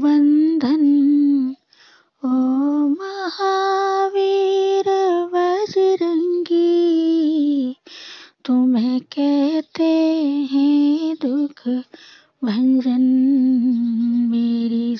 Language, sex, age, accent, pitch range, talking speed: Hindi, female, 20-39, native, 255-320 Hz, 40 wpm